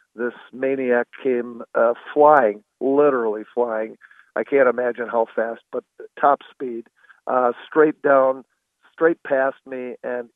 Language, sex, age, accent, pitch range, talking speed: English, male, 50-69, American, 120-140 Hz, 125 wpm